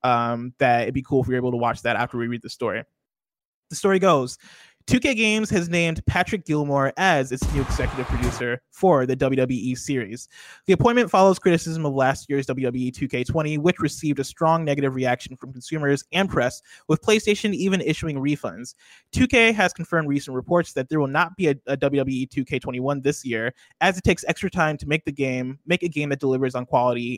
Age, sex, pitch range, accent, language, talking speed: 20-39, male, 130-165 Hz, American, English, 200 wpm